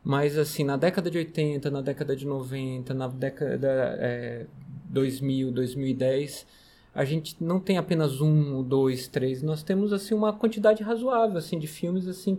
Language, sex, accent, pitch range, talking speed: Portuguese, male, Brazilian, 140-185 Hz, 155 wpm